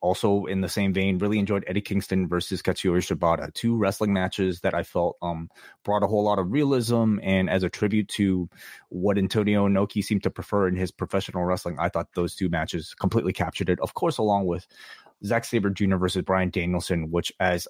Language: English